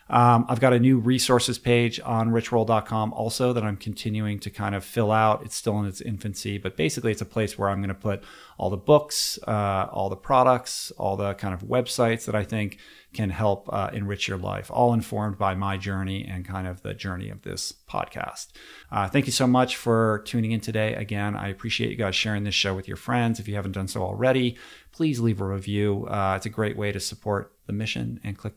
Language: English